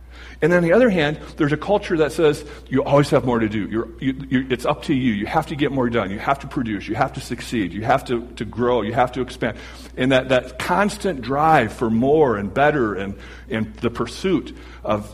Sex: male